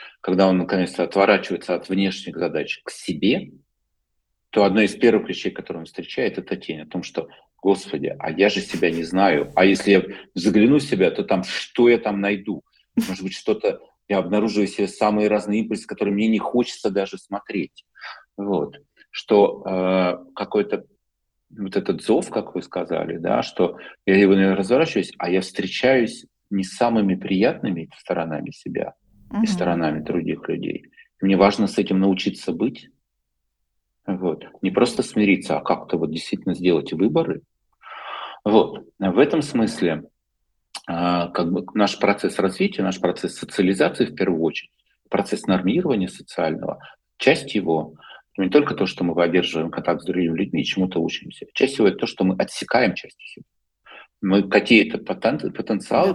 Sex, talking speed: male, 155 wpm